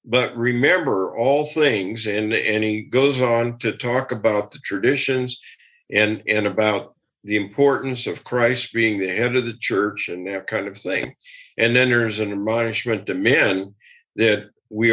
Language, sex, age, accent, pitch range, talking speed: English, male, 50-69, American, 110-140 Hz, 165 wpm